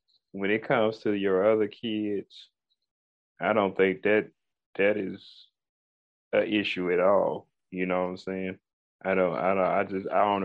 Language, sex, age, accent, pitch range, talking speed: English, male, 30-49, American, 95-105 Hz, 170 wpm